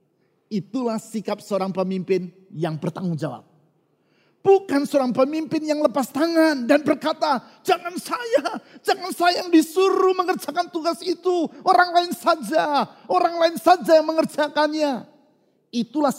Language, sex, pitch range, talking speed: Indonesian, male, 210-315 Hz, 120 wpm